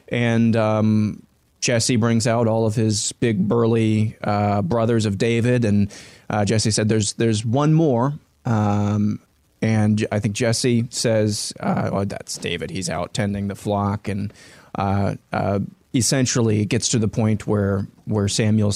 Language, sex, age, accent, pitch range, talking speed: English, male, 20-39, American, 105-120 Hz, 155 wpm